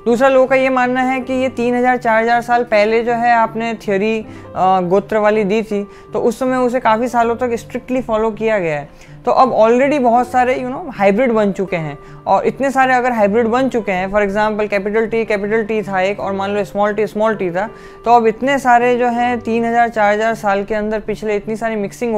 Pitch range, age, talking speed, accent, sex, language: 195-235 Hz, 20-39, 225 wpm, native, female, Hindi